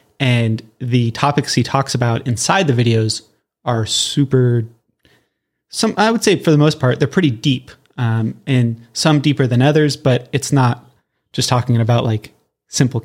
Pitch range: 115-135 Hz